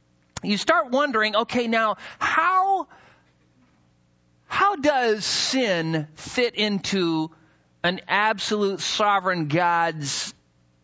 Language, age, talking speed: English, 40-59, 85 wpm